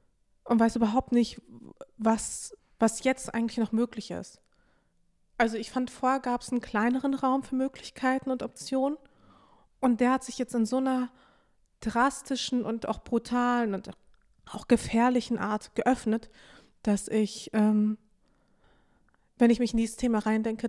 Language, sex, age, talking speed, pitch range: German, female, 20-39, 150 wpm, 210-245 Hz